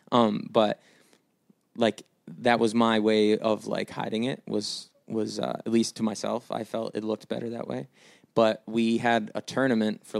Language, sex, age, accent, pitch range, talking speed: English, male, 20-39, American, 110-125 Hz, 180 wpm